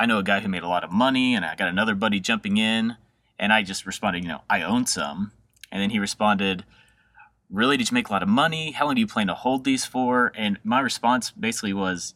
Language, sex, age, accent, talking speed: English, male, 30-49, American, 255 wpm